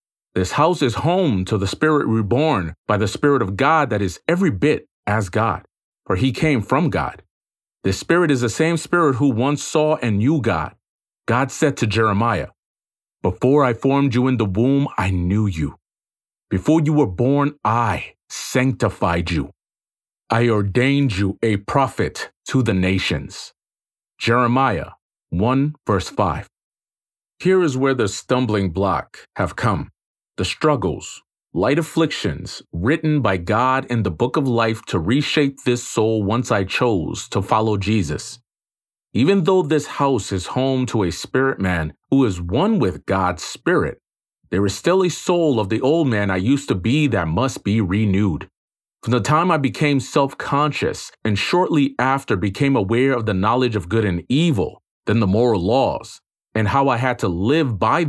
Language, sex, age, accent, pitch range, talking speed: English, male, 40-59, American, 105-140 Hz, 165 wpm